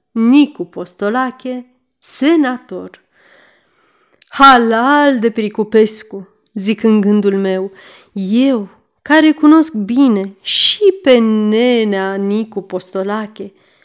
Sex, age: female, 30-49